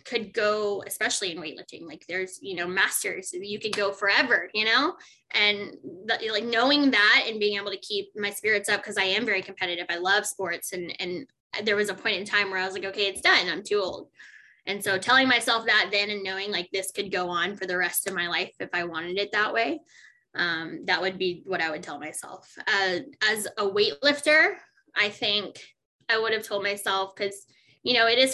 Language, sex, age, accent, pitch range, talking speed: English, female, 10-29, American, 185-215 Hz, 220 wpm